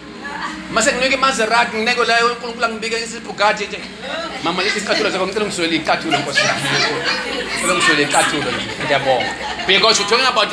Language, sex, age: English, male, 40-59